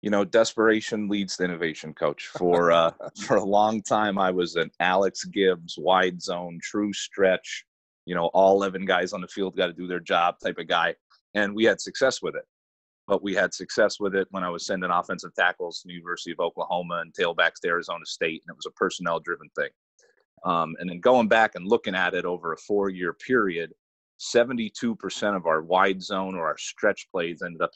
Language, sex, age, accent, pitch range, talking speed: English, male, 30-49, American, 85-105 Hz, 210 wpm